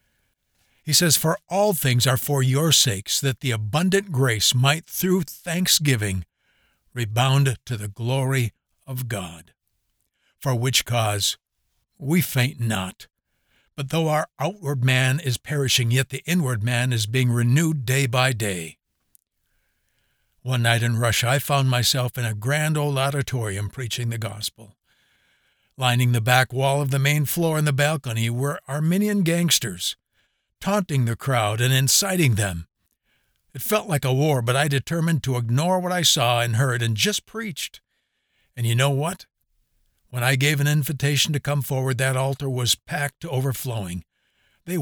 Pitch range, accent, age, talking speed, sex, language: 120-150 Hz, American, 60-79, 155 wpm, male, English